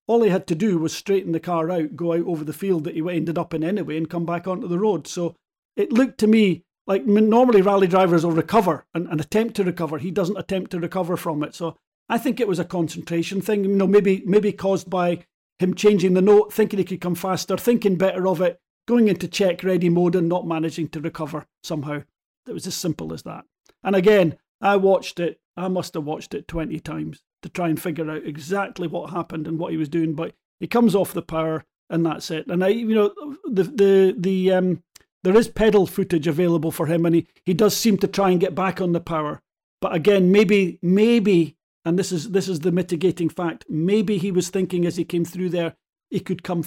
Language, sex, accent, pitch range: English, male, British, 165-195 Hz